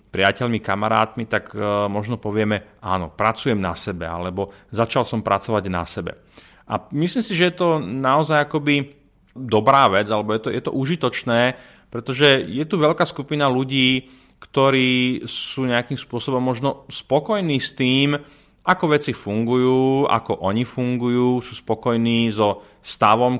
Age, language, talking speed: 30-49, Slovak, 140 wpm